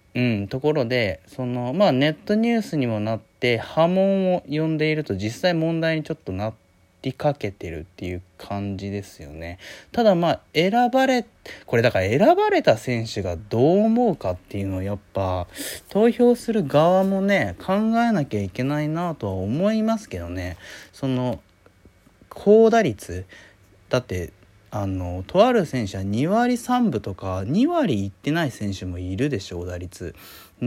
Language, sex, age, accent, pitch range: Japanese, male, 20-39, native, 95-160 Hz